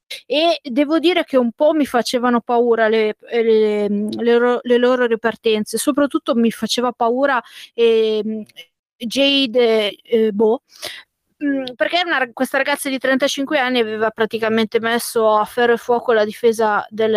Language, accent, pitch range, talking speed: Italian, native, 215-250 Hz, 140 wpm